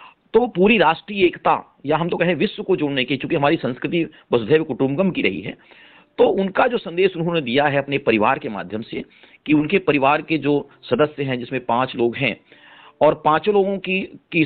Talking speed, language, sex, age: 200 wpm, Hindi, male, 40-59